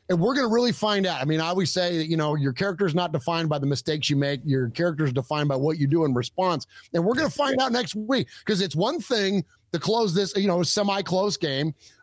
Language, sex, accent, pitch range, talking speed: English, male, American, 155-200 Hz, 270 wpm